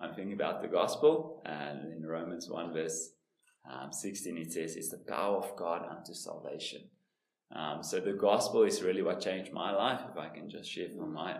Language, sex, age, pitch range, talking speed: English, male, 20-39, 85-110 Hz, 200 wpm